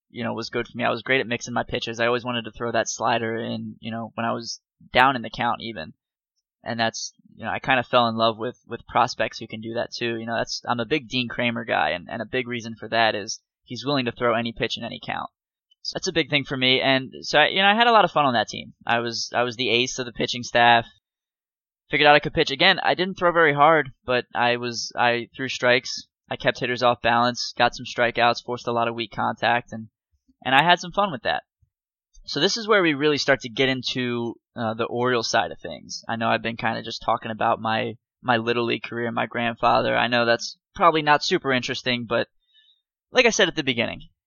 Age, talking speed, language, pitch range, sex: 20-39, 260 wpm, English, 115-135 Hz, male